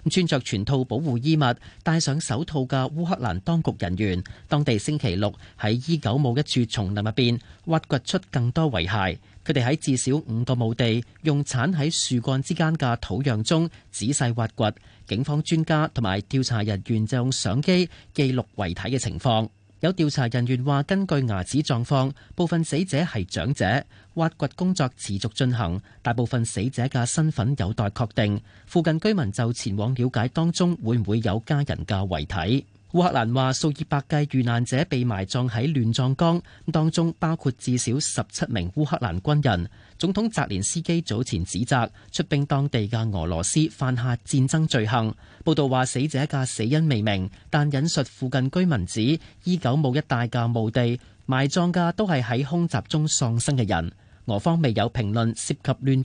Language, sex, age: Chinese, male, 40-59